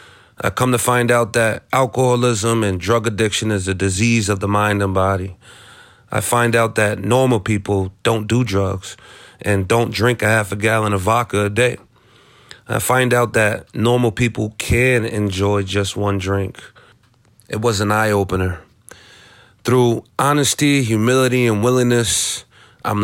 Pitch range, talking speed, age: 100-120 Hz, 155 wpm, 30-49